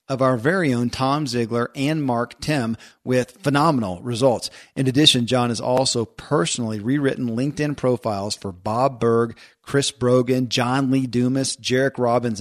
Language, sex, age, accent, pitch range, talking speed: English, male, 40-59, American, 115-135 Hz, 150 wpm